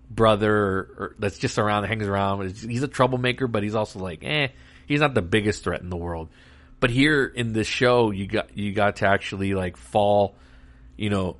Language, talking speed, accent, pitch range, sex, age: English, 200 wpm, American, 90-115 Hz, male, 40-59